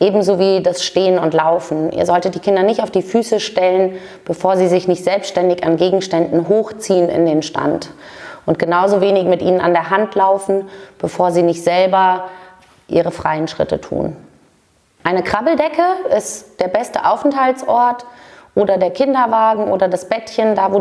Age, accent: 30-49, German